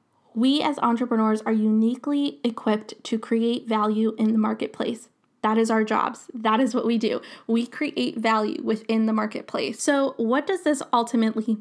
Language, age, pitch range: English, 10-29, 220-255 Hz